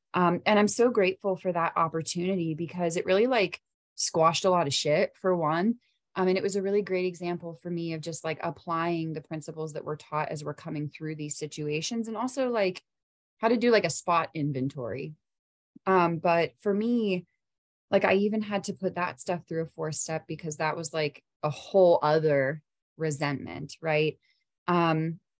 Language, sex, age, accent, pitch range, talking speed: English, female, 20-39, American, 150-185 Hz, 190 wpm